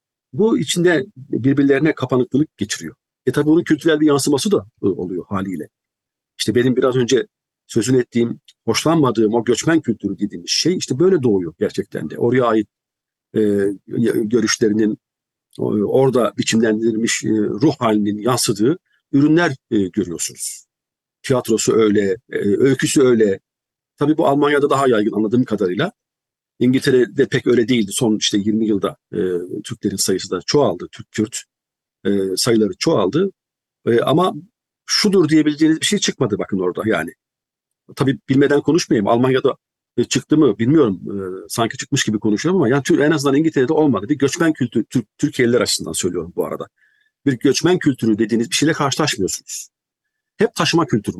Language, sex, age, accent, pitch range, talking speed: Turkish, male, 50-69, native, 110-155 Hz, 140 wpm